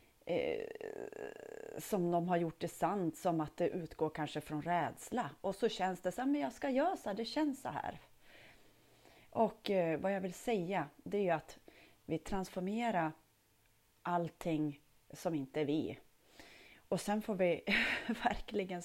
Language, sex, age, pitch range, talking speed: Swedish, female, 30-49, 155-220 Hz, 165 wpm